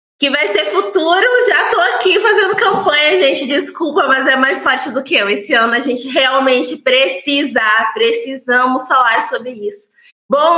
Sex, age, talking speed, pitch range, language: female, 20-39, 165 wpm, 230-275 Hz, Portuguese